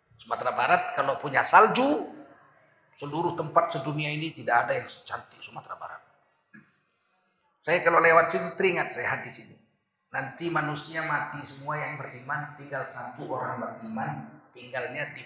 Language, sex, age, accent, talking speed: Indonesian, male, 40-59, native, 140 wpm